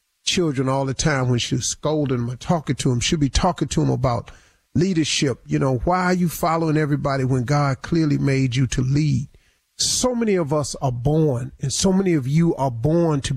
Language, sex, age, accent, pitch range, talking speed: English, male, 40-59, American, 140-195 Hz, 210 wpm